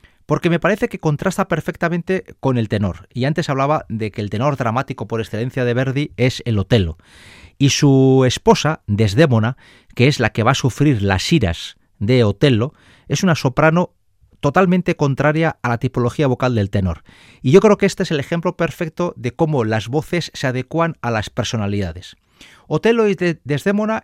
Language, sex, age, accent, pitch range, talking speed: Spanish, male, 40-59, Spanish, 110-165 Hz, 175 wpm